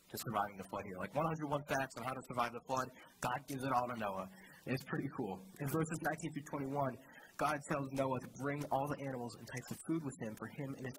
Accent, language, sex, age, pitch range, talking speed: American, English, male, 20-39, 125-155 Hz, 255 wpm